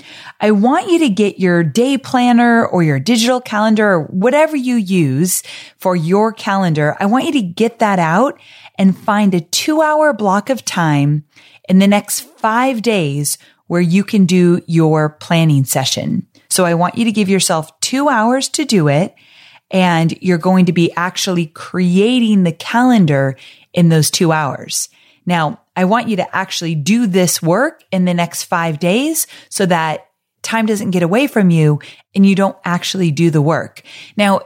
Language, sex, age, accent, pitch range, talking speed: English, female, 30-49, American, 165-230 Hz, 175 wpm